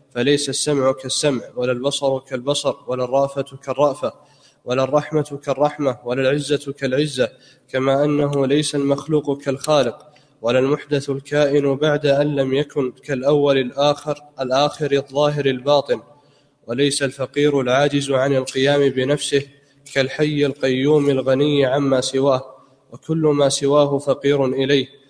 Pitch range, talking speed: 135-145 Hz, 115 wpm